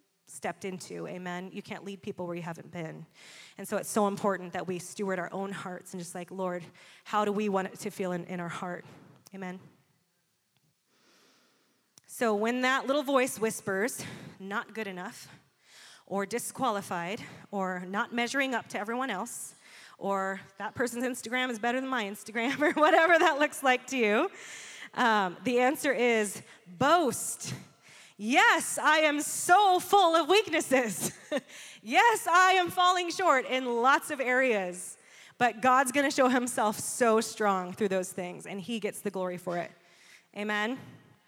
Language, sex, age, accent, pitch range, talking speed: English, female, 20-39, American, 195-290 Hz, 165 wpm